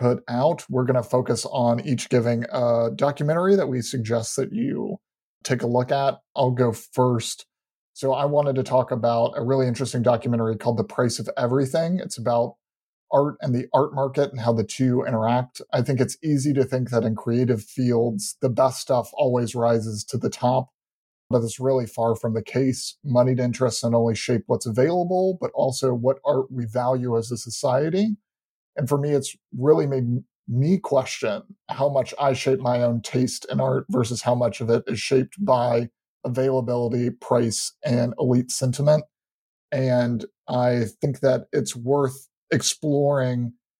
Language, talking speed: English, 175 wpm